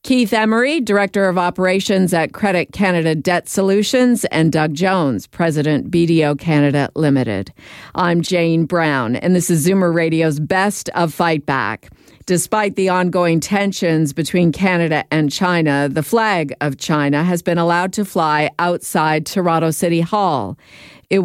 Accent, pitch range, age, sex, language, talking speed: American, 150-180 Hz, 50-69, female, English, 145 wpm